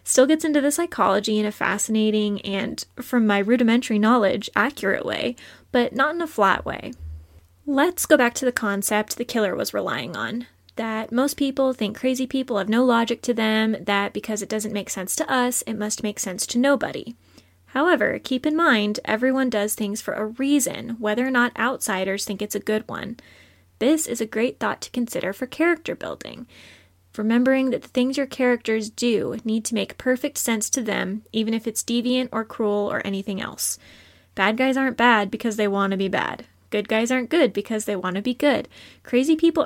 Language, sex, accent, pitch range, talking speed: English, female, American, 210-255 Hz, 200 wpm